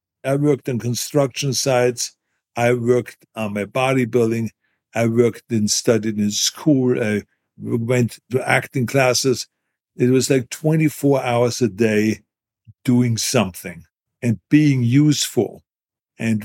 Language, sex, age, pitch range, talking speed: English, male, 60-79, 110-130 Hz, 125 wpm